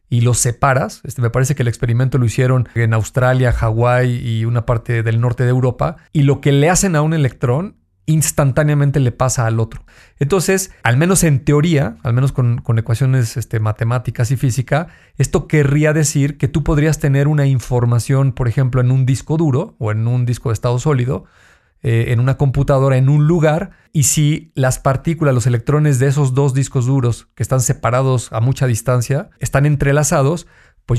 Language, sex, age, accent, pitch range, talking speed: Spanish, male, 40-59, Mexican, 120-145 Hz, 180 wpm